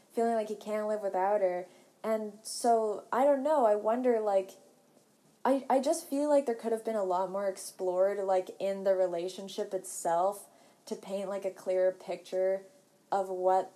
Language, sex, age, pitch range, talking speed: English, female, 20-39, 185-215 Hz, 180 wpm